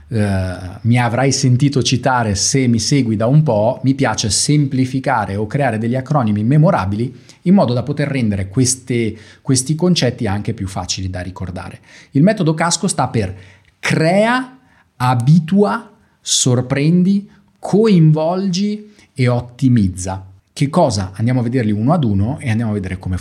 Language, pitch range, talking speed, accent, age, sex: Italian, 105-150 Hz, 140 wpm, native, 30-49, male